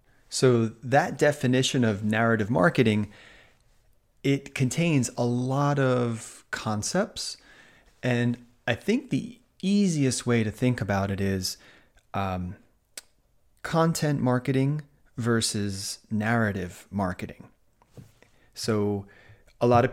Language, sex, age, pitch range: Japanese, male, 30-49, 105-125 Hz